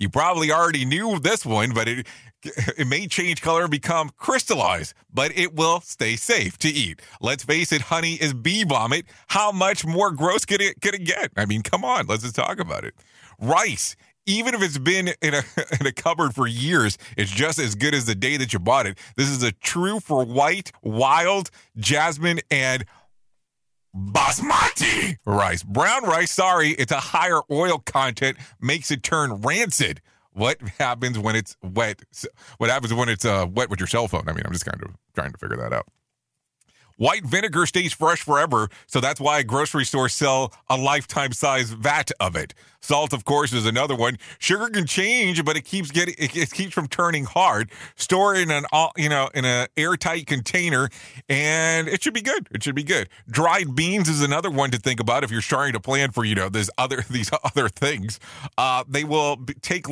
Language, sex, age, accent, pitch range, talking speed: English, male, 30-49, American, 120-165 Hz, 195 wpm